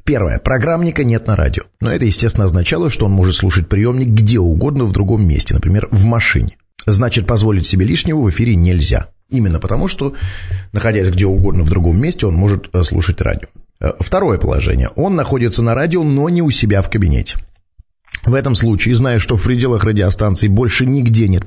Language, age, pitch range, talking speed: Russian, 30-49, 95-135 Hz, 180 wpm